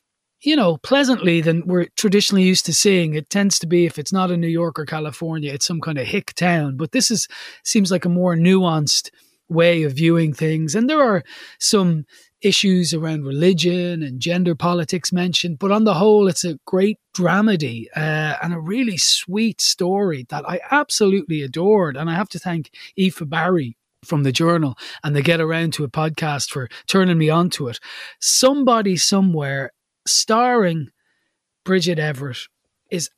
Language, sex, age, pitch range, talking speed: English, male, 30-49, 145-190 Hz, 175 wpm